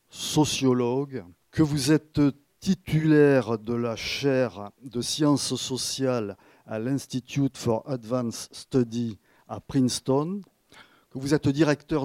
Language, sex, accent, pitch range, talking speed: French, male, French, 115-140 Hz, 110 wpm